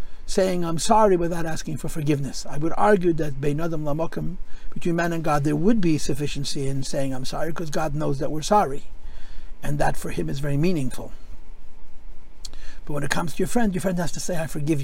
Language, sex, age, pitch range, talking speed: English, male, 50-69, 135-190 Hz, 200 wpm